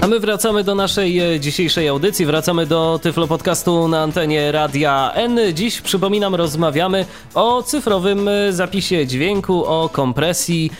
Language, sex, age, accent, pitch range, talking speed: Polish, male, 20-39, native, 145-180 Hz, 135 wpm